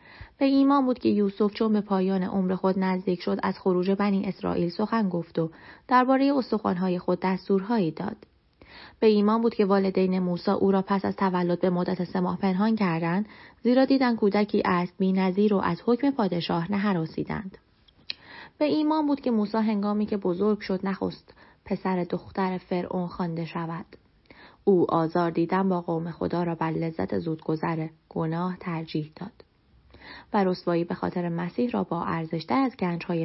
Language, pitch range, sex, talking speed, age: Persian, 170-205 Hz, female, 165 wpm, 30-49